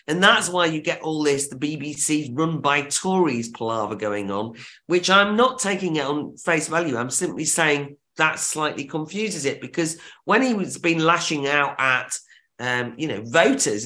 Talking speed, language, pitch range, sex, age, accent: 180 wpm, English, 145-175 Hz, male, 40-59, British